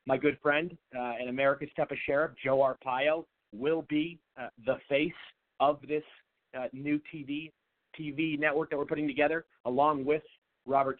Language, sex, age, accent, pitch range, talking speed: English, male, 30-49, American, 110-140 Hz, 160 wpm